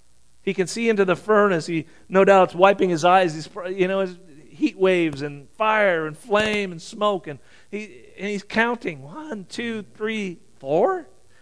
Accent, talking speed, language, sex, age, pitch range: American, 175 wpm, English, male, 40-59, 170-220 Hz